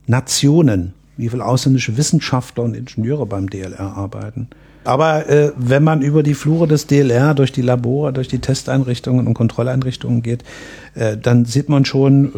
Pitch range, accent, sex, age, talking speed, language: 120-140 Hz, German, male, 50-69, 160 wpm, German